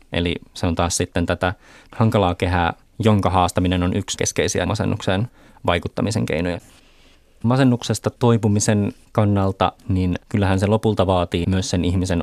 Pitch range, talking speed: 90-100 Hz, 130 wpm